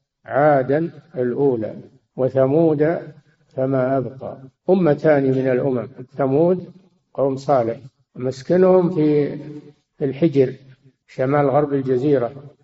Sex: male